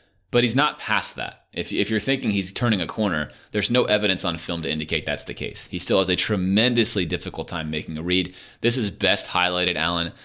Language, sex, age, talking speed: English, male, 30-49, 225 wpm